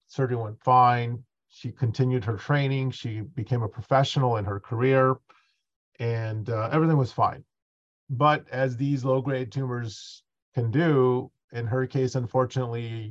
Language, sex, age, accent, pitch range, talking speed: English, male, 40-59, American, 115-135 Hz, 135 wpm